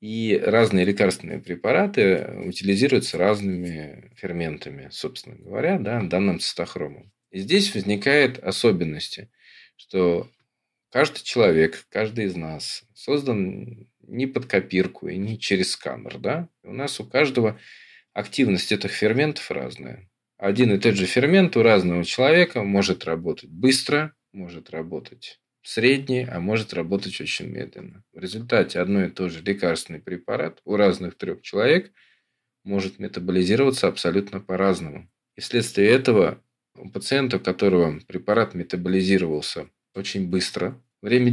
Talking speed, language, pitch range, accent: 125 wpm, Russian, 95-125 Hz, native